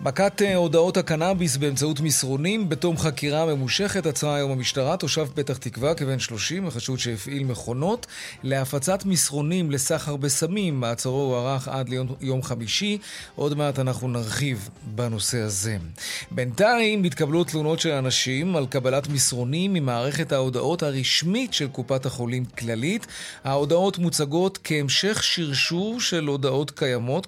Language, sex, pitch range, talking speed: Hebrew, male, 130-170 Hz, 125 wpm